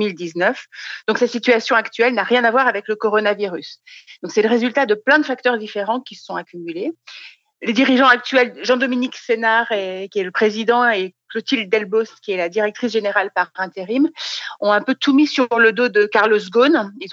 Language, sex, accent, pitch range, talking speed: French, female, French, 200-250 Hz, 190 wpm